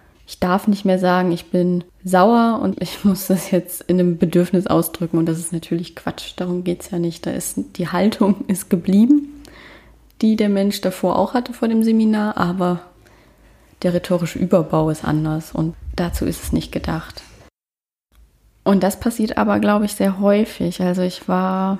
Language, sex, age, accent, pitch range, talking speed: German, female, 20-39, German, 170-200 Hz, 180 wpm